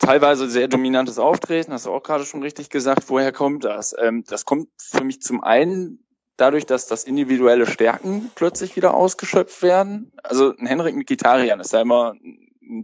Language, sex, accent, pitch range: German, male, German, 130-180 Hz